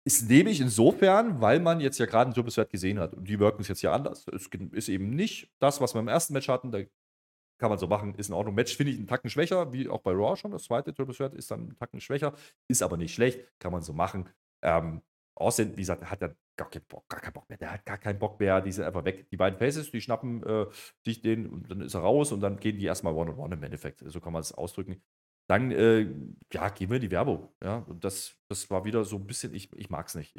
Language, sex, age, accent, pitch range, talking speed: German, male, 30-49, German, 90-120 Hz, 270 wpm